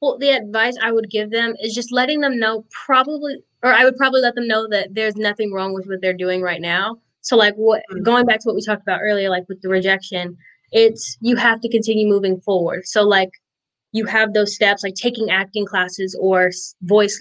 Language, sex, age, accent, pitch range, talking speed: English, female, 10-29, American, 185-215 Hz, 225 wpm